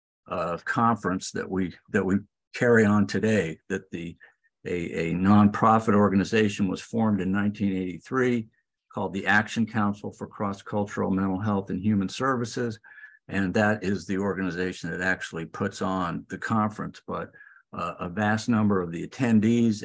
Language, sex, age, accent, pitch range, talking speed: English, male, 50-69, American, 95-110 Hz, 150 wpm